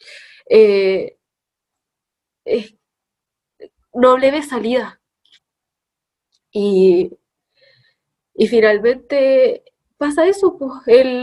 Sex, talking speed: female, 70 wpm